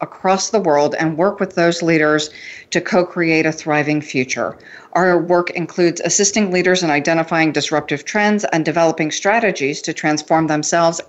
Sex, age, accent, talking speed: female, 40-59, American, 150 wpm